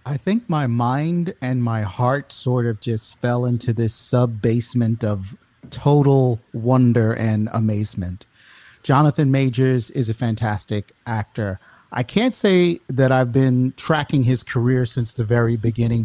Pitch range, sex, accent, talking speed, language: 115-145 Hz, male, American, 140 wpm, English